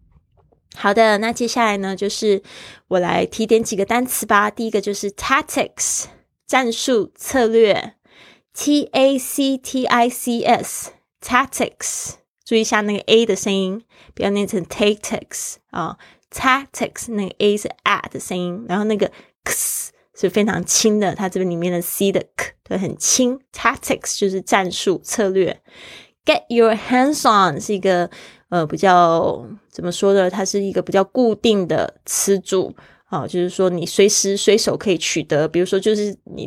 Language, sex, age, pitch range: Chinese, female, 20-39, 180-220 Hz